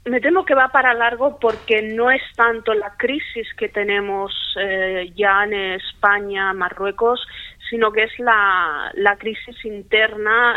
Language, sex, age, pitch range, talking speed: Spanish, female, 20-39, 195-220 Hz, 150 wpm